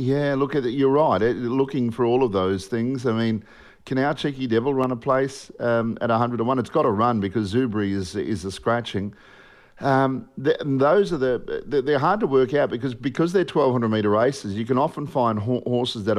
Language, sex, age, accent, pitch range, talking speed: English, male, 50-69, Australian, 115-135 Hz, 220 wpm